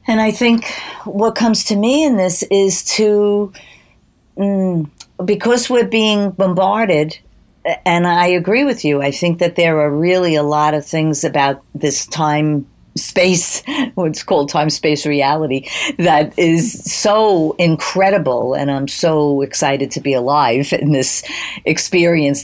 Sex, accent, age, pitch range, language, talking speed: female, American, 50-69, 145-185 Hz, English, 140 wpm